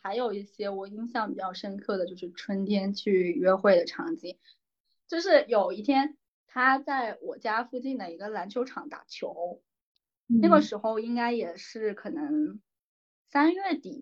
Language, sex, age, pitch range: Chinese, female, 20-39, 195-270 Hz